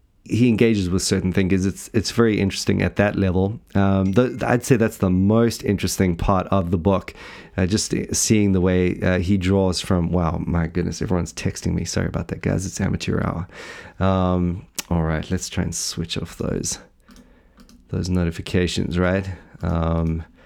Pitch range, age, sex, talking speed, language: 90-110 Hz, 30-49, male, 175 wpm, English